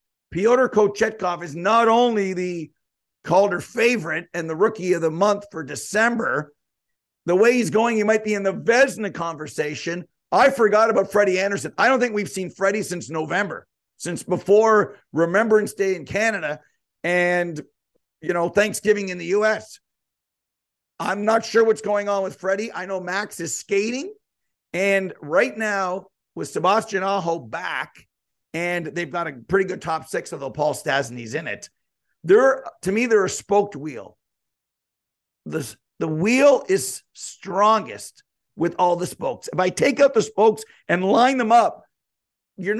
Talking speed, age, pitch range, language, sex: 160 wpm, 50-69, 175-220 Hz, English, male